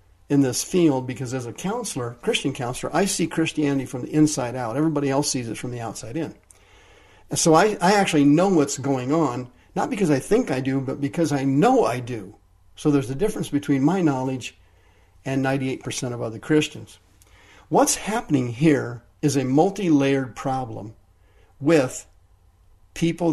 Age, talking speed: 50-69, 165 wpm